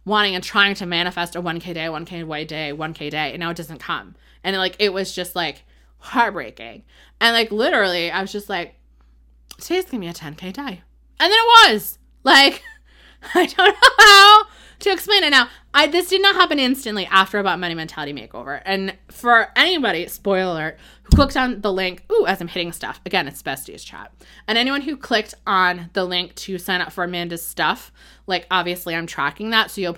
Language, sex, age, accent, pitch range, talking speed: English, female, 20-39, American, 165-230 Hz, 200 wpm